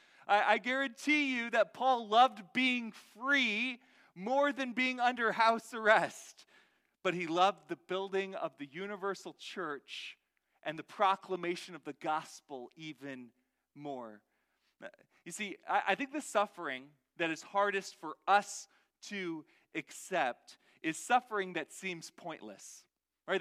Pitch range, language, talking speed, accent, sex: 180-245 Hz, English, 135 wpm, American, male